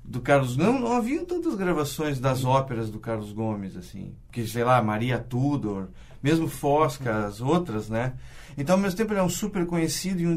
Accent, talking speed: Brazilian, 195 wpm